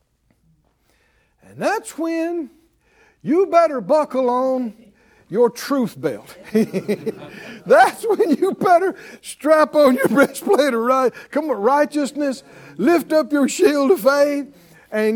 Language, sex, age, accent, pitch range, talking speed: English, male, 60-79, American, 195-295 Hz, 115 wpm